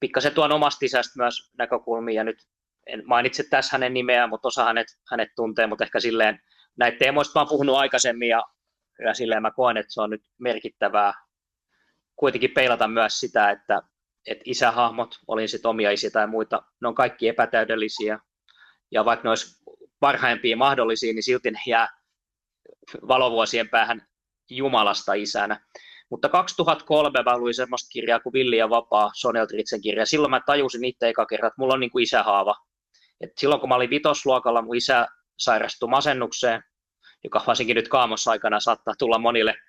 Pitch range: 110-135 Hz